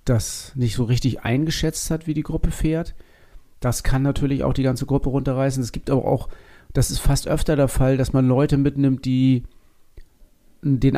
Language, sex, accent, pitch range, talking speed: German, male, German, 120-140 Hz, 185 wpm